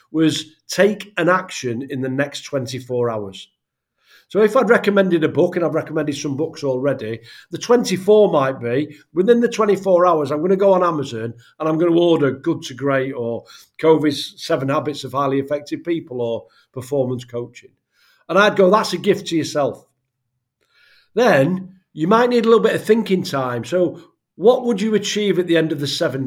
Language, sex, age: English, male, 50-69